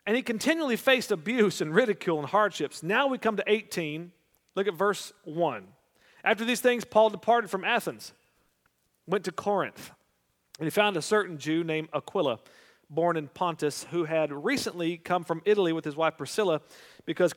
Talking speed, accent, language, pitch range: 175 wpm, American, English, 145-195 Hz